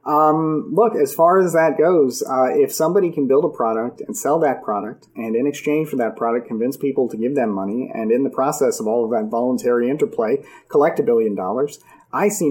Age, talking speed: 30-49, 220 wpm